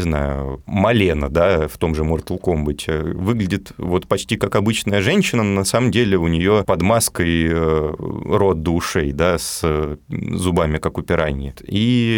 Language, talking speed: Russian, 165 wpm